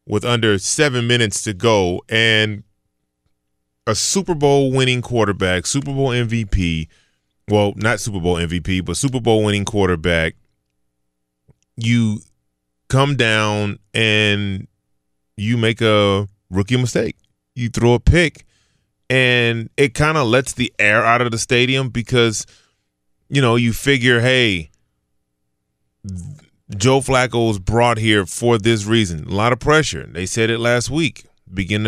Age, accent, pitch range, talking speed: 20-39, American, 95-120 Hz, 135 wpm